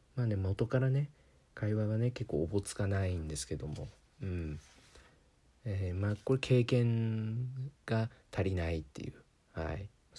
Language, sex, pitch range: Japanese, male, 95-120 Hz